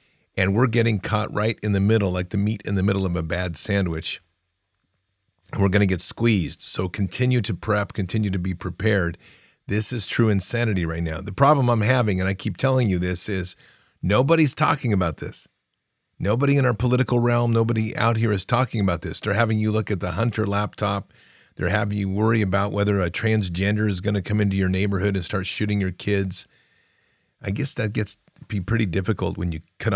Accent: American